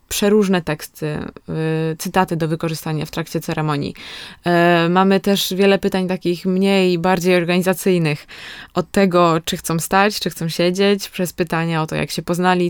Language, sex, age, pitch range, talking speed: Polish, female, 20-39, 170-195 Hz, 145 wpm